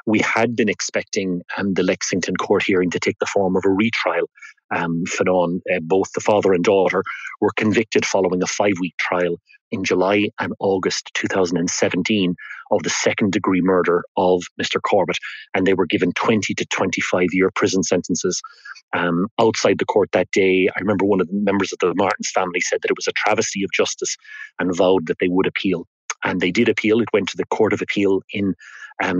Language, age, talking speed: English, 30-49, 190 wpm